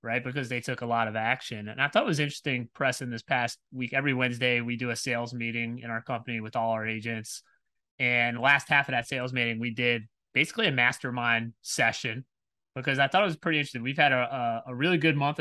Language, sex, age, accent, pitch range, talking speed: English, male, 30-49, American, 115-135 Hz, 240 wpm